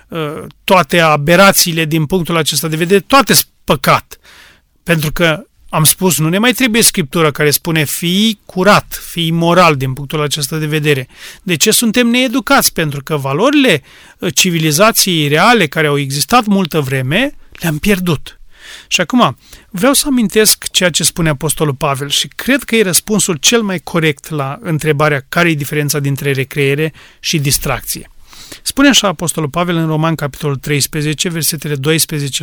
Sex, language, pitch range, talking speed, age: male, Romanian, 150-205 Hz, 150 wpm, 30-49